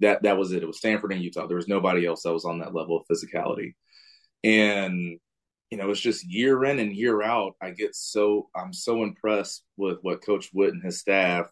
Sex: male